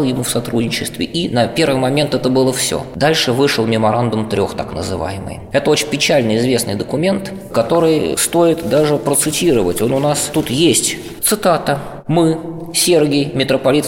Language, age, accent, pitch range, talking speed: Russian, 20-39, native, 120-155 Hz, 145 wpm